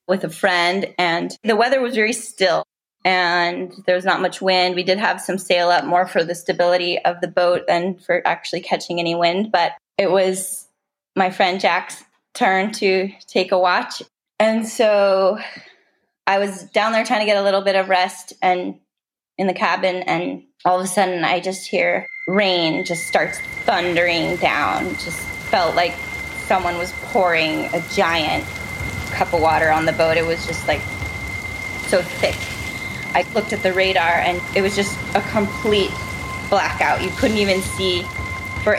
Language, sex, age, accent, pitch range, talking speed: English, female, 10-29, American, 165-195 Hz, 175 wpm